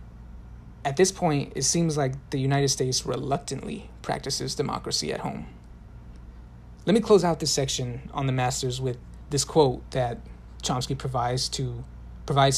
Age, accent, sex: 30-49, American, male